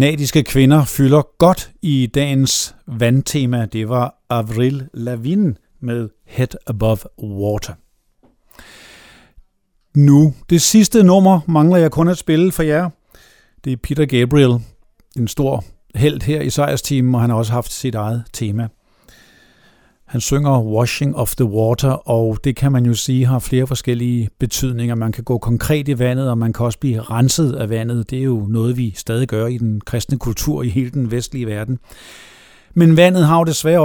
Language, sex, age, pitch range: Danish, male, 50-69, 115-145 Hz